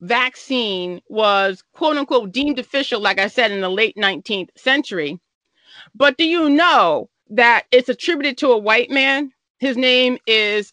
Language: English